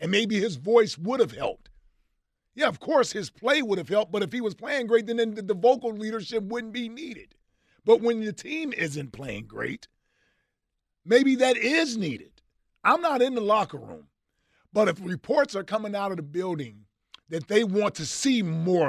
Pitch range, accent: 165-225 Hz, American